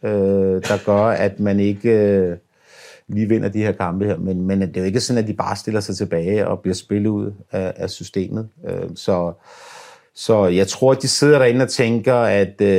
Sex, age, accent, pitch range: male, 50-69, native, 100-120 Hz